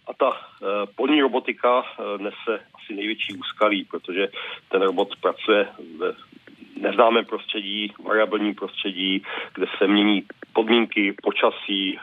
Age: 40-59